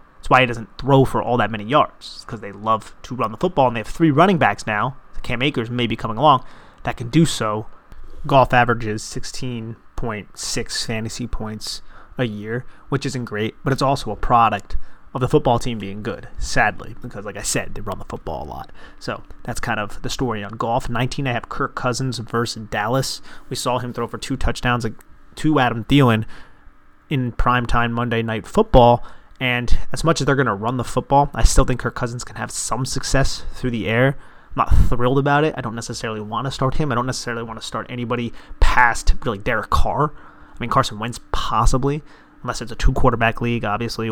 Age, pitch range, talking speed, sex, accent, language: 30-49, 110-130 Hz, 210 wpm, male, American, English